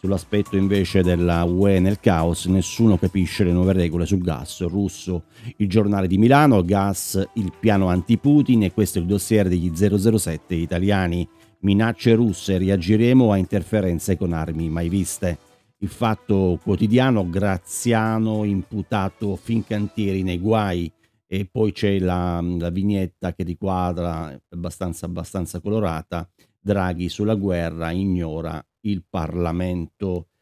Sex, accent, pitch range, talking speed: male, native, 90-105 Hz, 130 wpm